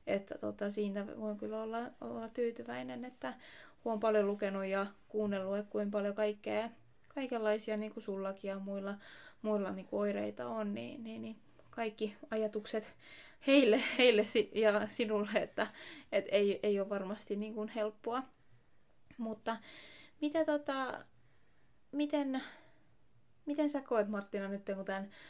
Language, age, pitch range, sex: Finnish, 20-39, 200-225 Hz, female